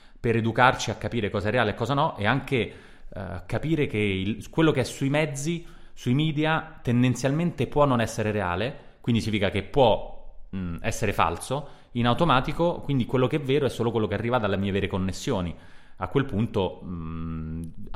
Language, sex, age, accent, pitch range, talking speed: Italian, male, 30-49, native, 95-125 Hz, 185 wpm